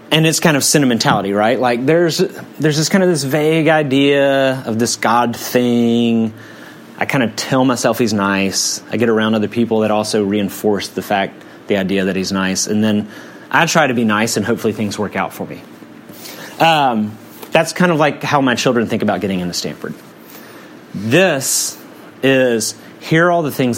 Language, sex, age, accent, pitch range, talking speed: English, male, 30-49, American, 115-165 Hz, 190 wpm